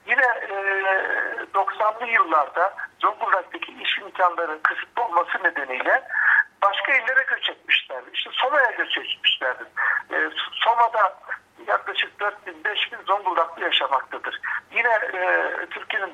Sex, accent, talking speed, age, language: male, native, 110 wpm, 60-79, Turkish